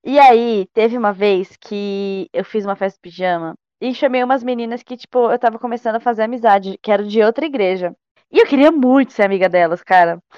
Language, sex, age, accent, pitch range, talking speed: Portuguese, female, 20-39, Brazilian, 195-250 Hz, 215 wpm